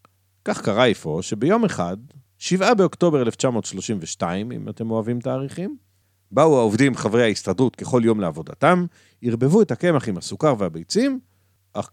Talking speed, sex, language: 130 wpm, male, Hebrew